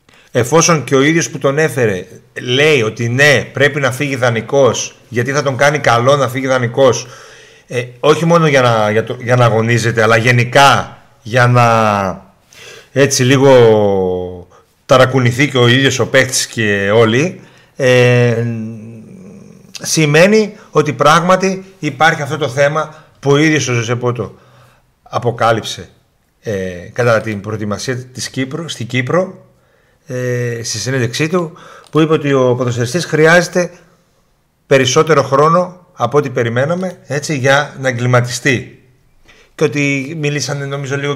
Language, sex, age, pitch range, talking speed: Greek, male, 40-59, 115-145 Hz, 135 wpm